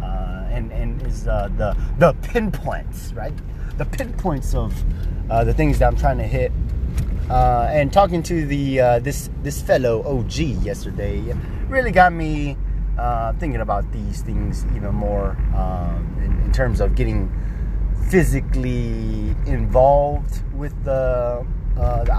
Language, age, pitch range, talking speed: English, 30-49, 95-130 Hz, 140 wpm